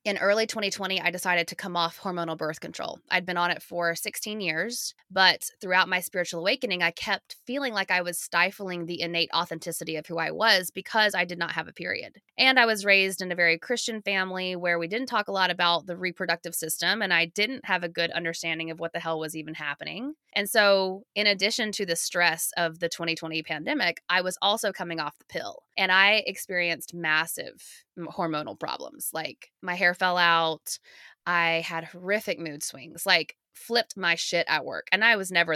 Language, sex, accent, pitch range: English, female, American, 170-200 Hz